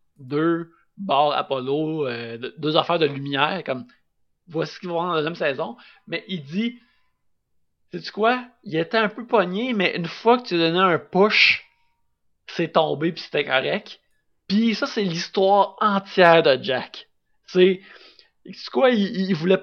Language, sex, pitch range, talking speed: French, male, 145-195 Hz, 170 wpm